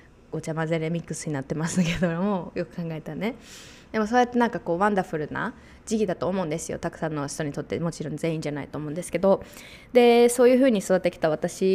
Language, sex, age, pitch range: Japanese, female, 20-39, 160-220 Hz